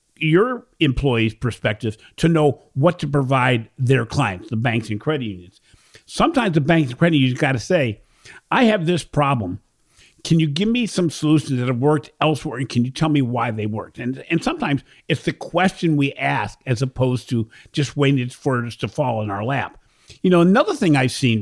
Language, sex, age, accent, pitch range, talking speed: English, male, 50-69, American, 120-160 Hz, 200 wpm